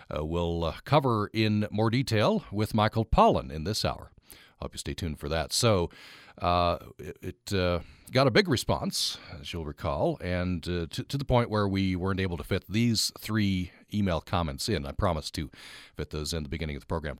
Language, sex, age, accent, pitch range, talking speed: English, male, 50-69, American, 85-115 Hz, 205 wpm